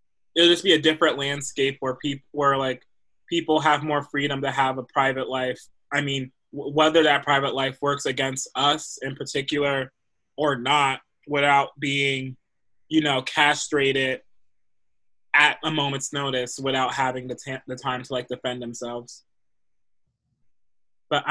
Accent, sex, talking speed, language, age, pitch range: American, male, 150 wpm, English, 20-39, 125-145 Hz